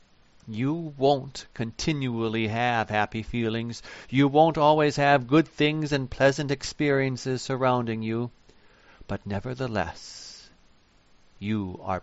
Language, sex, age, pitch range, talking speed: English, male, 50-69, 115-165 Hz, 105 wpm